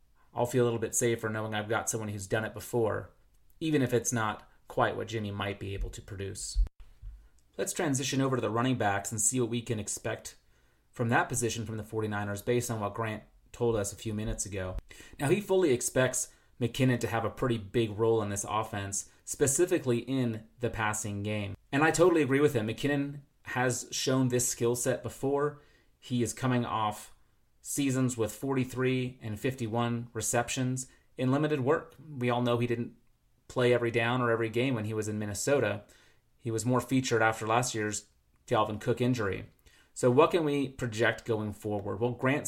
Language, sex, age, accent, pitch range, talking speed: English, male, 30-49, American, 110-130 Hz, 190 wpm